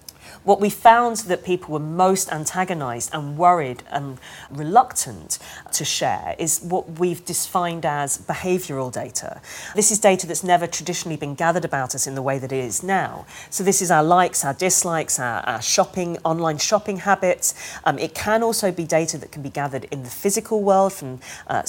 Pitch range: 150-190 Hz